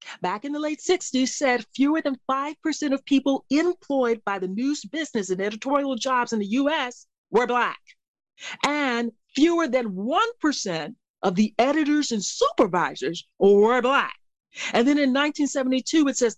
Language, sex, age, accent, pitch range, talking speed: English, female, 40-59, American, 205-295 Hz, 150 wpm